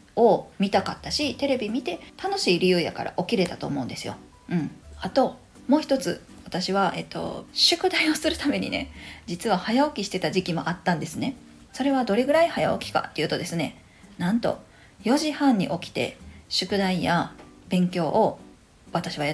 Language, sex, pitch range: Japanese, female, 180-265 Hz